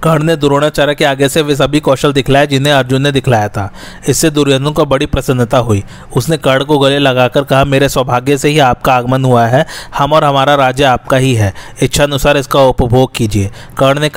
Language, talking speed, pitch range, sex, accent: Hindi, 125 wpm, 130-145 Hz, male, native